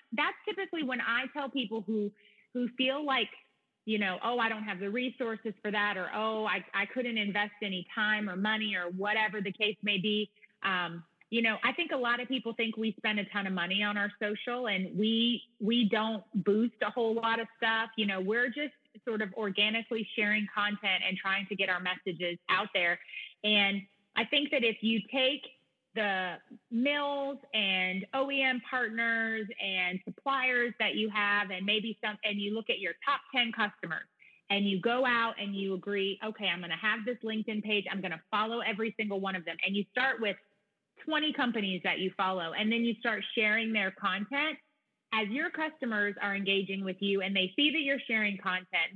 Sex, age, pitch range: female, 30-49, 200-235 Hz